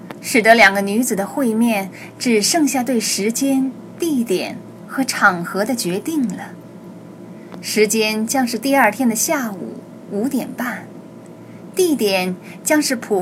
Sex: female